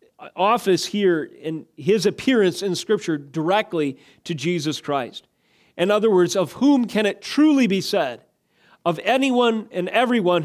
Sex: male